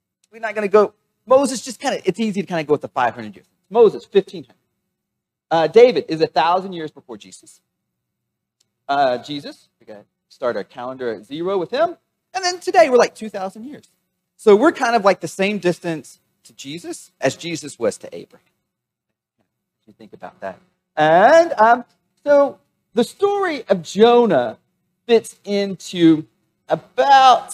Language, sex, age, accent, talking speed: English, male, 40-59, American, 170 wpm